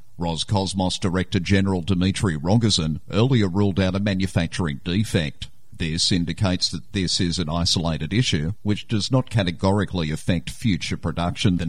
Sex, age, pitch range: male, 50-69, 85-110 Hz